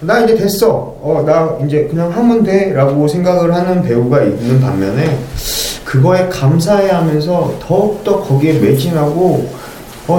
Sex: male